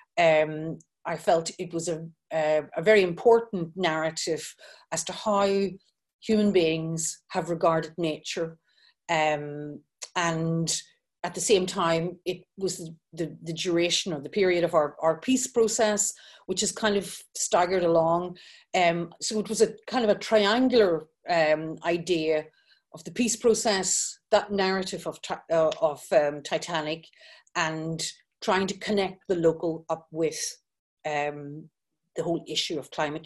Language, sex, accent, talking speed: English, female, Irish, 150 wpm